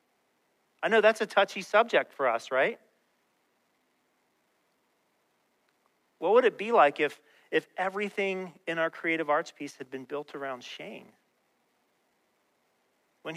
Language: English